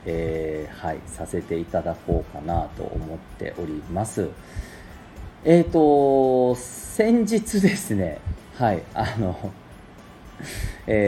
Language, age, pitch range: Japanese, 40-59, 85-120 Hz